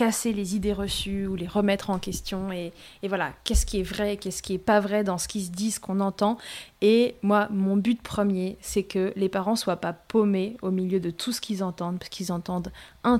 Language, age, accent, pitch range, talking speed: French, 20-39, French, 180-215 Hz, 235 wpm